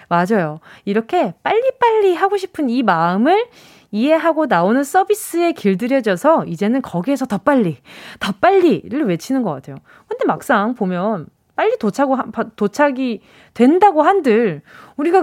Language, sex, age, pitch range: Korean, female, 20-39, 200-310 Hz